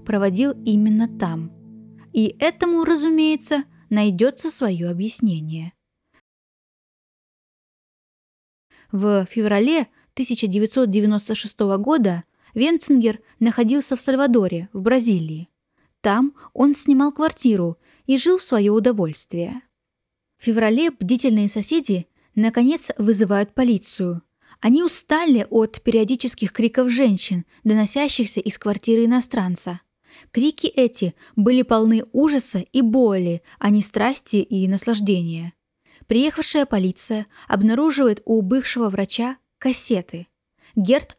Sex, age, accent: female, 20-39, native